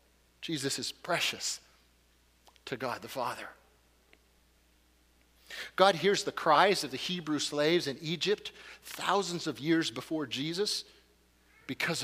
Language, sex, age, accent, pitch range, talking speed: English, male, 50-69, American, 125-185 Hz, 115 wpm